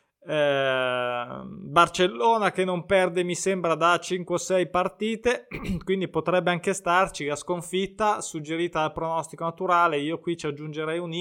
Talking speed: 145 wpm